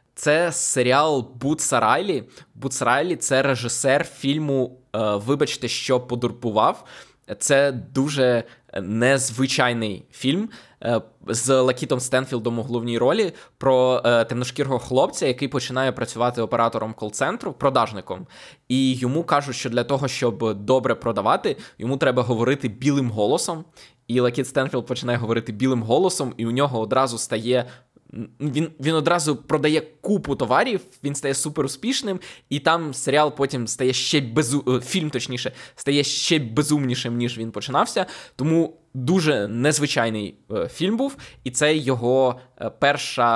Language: Ukrainian